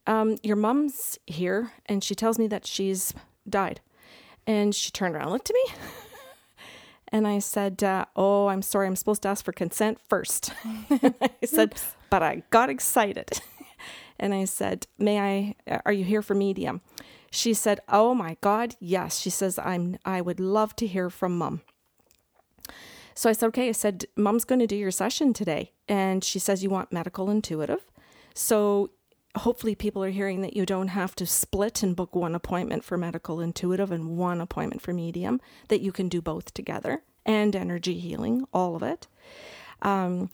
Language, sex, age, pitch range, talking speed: English, female, 40-59, 190-220 Hz, 180 wpm